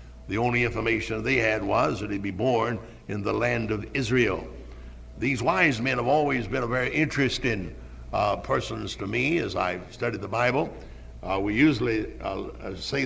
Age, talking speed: 60-79, 175 wpm